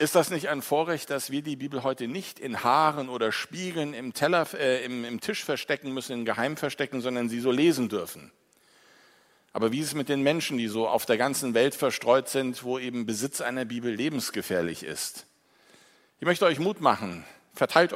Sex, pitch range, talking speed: male, 120-160 Hz, 195 wpm